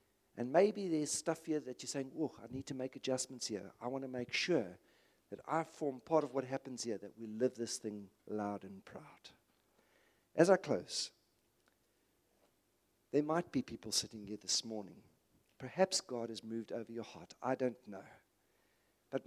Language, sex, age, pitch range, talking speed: English, male, 50-69, 110-135 Hz, 180 wpm